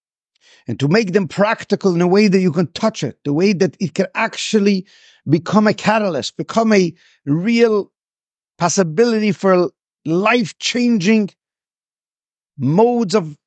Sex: male